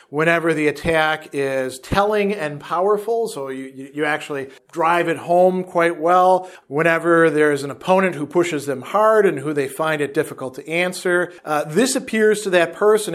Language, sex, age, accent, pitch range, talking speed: English, male, 50-69, American, 145-185 Hz, 175 wpm